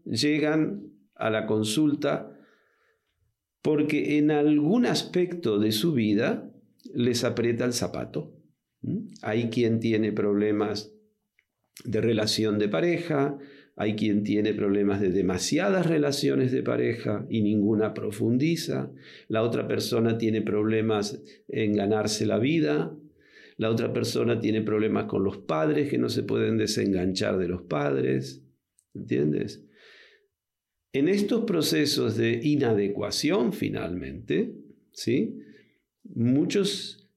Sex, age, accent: male, 50-69, Argentinian